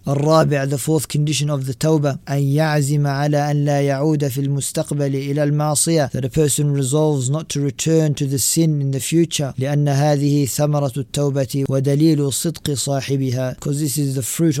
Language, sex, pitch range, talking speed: English, male, 130-150 Hz, 175 wpm